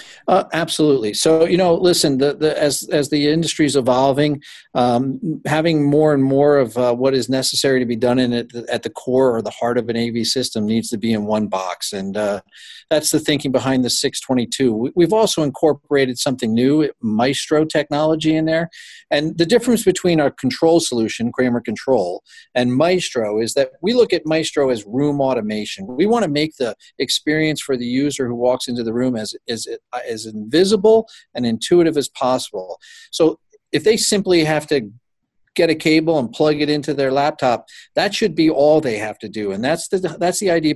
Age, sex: 50-69, male